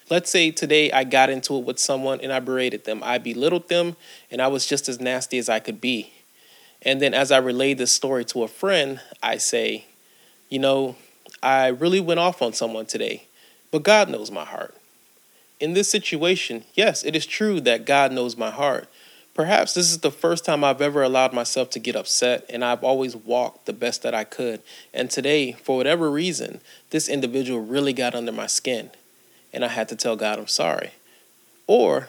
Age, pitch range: 30-49, 125-160 Hz